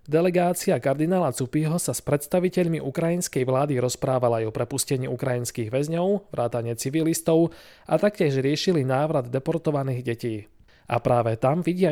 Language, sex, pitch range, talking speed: Slovak, male, 125-165 Hz, 130 wpm